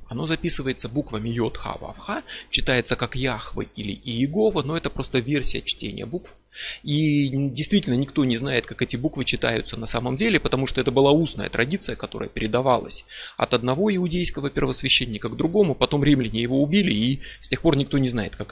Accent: native